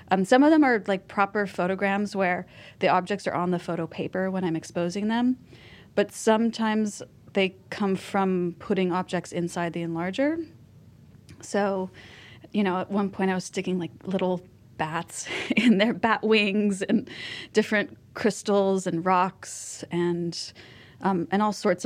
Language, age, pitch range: English, 30-49, 175-215 Hz